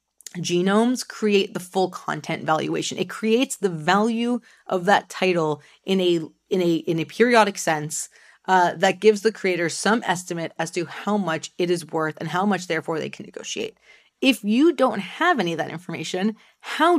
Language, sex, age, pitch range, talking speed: English, female, 30-49, 180-225 Hz, 180 wpm